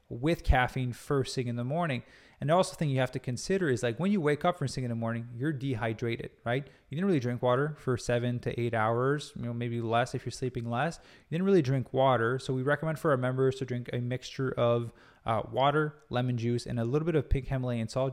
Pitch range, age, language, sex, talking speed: 120-150 Hz, 20-39, English, male, 245 wpm